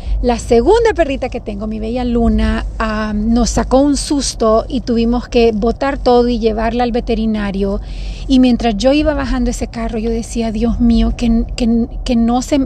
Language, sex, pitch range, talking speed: Spanish, female, 230-265 Hz, 180 wpm